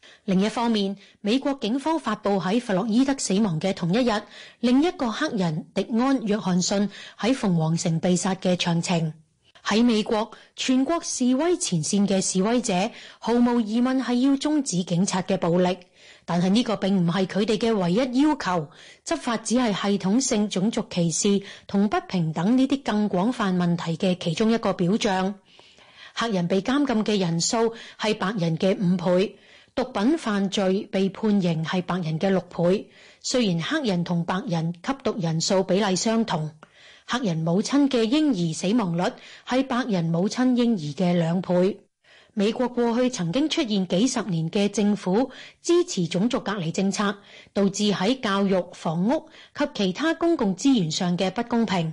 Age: 30-49